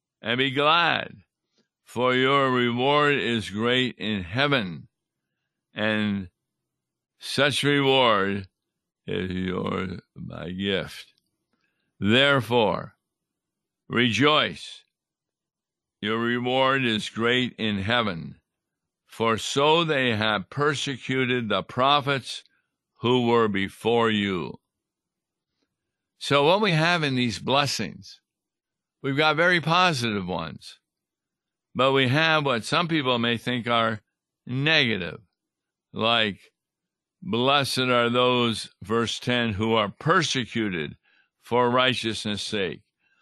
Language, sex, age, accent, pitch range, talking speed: English, male, 60-79, American, 110-135 Hz, 95 wpm